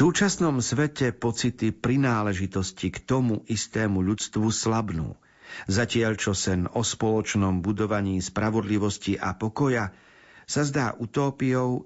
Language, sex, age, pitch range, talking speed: Slovak, male, 50-69, 100-130 Hz, 105 wpm